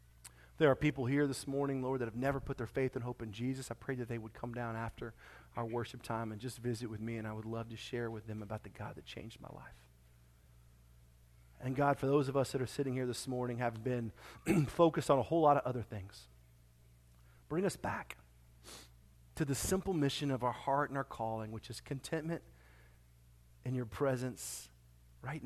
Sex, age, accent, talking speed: male, 40-59, American, 210 wpm